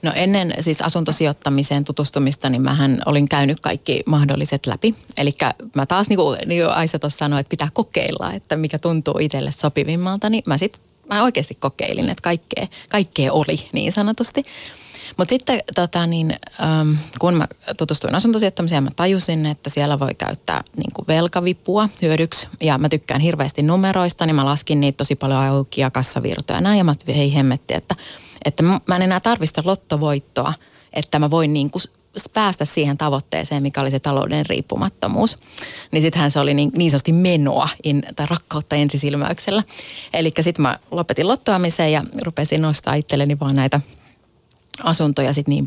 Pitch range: 140-170 Hz